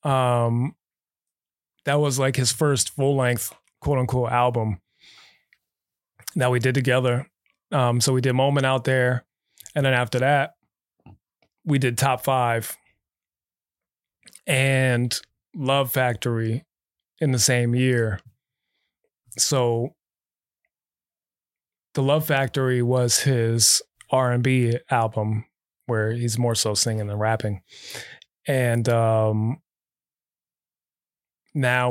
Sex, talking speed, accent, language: male, 105 wpm, American, English